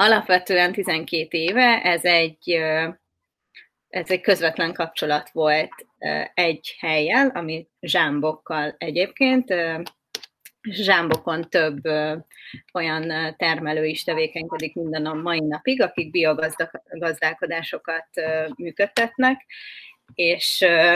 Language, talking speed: Hungarian, 80 wpm